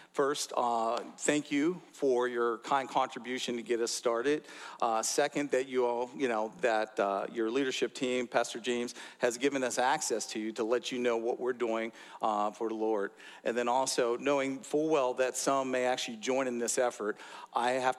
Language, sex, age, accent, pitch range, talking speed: English, male, 50-69, American, 120-150 Hz, 195 wpm